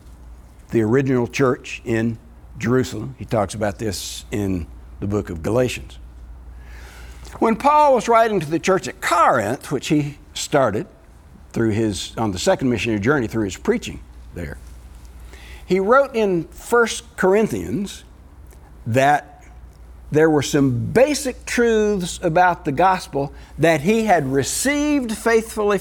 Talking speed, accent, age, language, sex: 130 wpm, American, 60-79, English, male